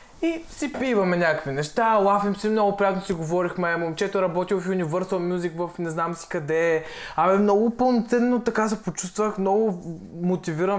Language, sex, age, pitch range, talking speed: Bulgarian, male, 20-39, 185-255 Hz, 170 wpm